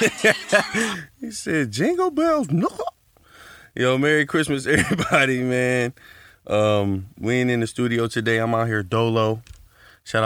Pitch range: 105-125 Hz